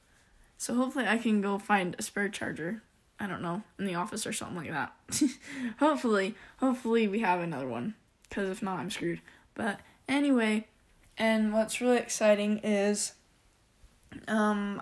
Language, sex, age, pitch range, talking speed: English, female, 10-29, 195-225 Hz, 155 wpm